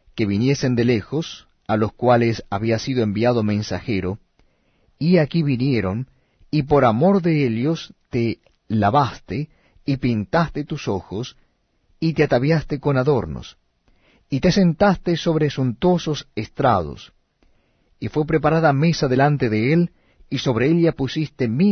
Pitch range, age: 110-150 Hz, 50-69